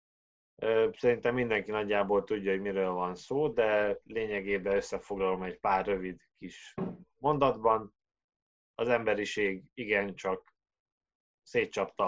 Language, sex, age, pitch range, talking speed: Hungarian, male, 20-39, 95-115 Hz, 100 wpm